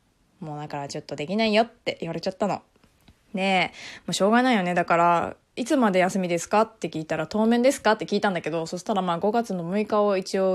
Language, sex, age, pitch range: Japanese, female, 20-39, 170-230 Hz